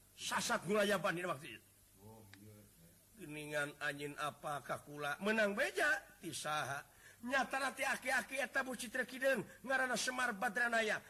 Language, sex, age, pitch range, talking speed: Indonesian, male, 50-69, 175-240 Hz, 125 wpm